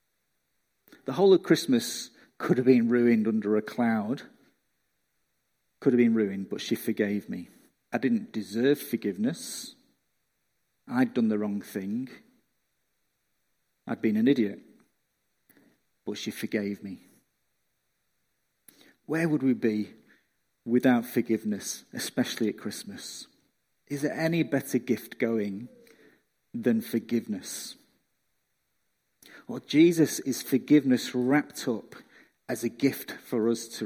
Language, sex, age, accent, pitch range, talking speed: English, male, 40-59, British, 115-165 Hz, 115 wpm